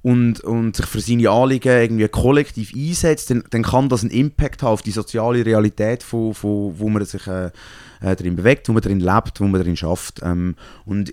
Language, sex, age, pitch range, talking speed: German, male, 30-49, 110-140 Hz, 205 wpm